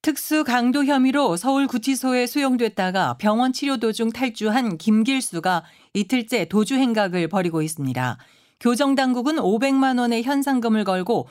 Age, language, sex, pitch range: 40-59, Korean, female, 175-250 Hz